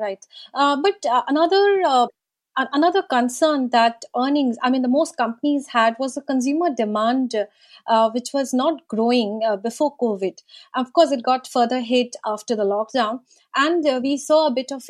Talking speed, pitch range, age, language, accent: 175 wpm, 225-280 Hz, 30-49, English, Indian